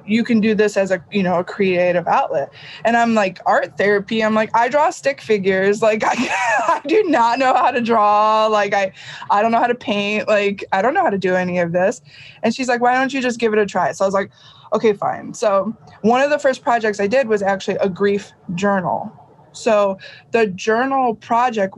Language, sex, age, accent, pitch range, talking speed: English, female, 20-39, American, 190-235 Hz, 230 wpm